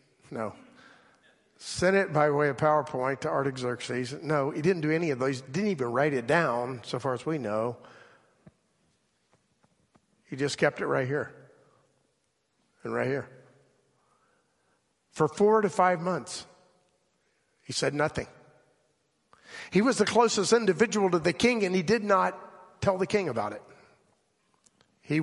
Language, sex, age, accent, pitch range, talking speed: English, male, 50-69, American, 130-180 Hz, 145 wpm